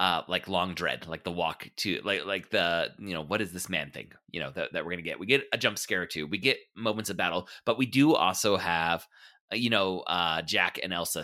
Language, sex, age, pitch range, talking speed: English, male, 30-49, 90-125 Hz, 255 wpm